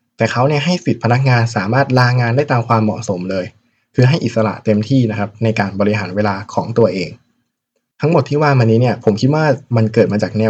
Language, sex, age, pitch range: Thai, male, 20-39, 105-125 Hz